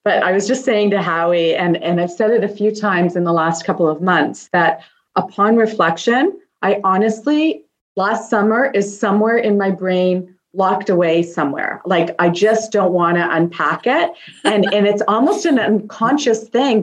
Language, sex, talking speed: English, female, 180 wpm